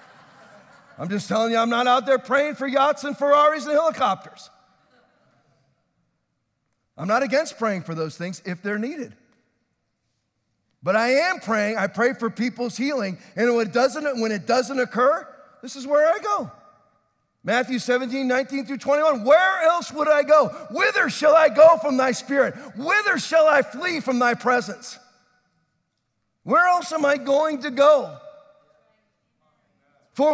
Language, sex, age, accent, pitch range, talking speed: English, male, 40-59, American, 240-315 Hz, 150 wpm